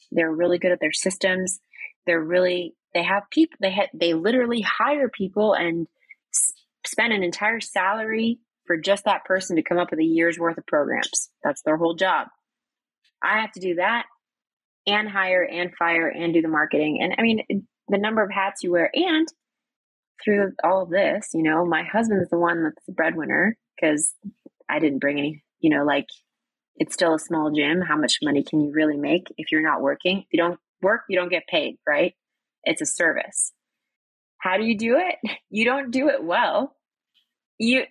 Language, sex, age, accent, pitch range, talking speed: English, female, 20-39, American, 170-225 Hz, 195 wpm